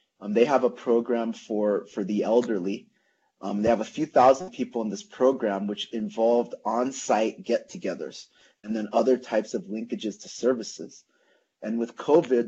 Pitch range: 105-120 Hz